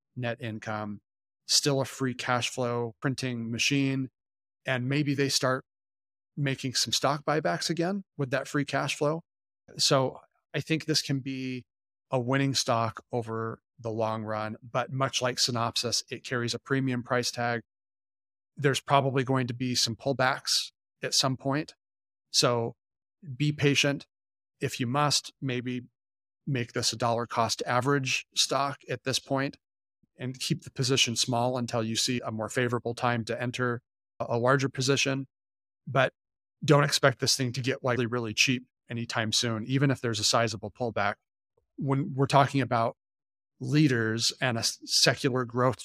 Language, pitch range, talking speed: English, 115-135 Hz, 155 wpm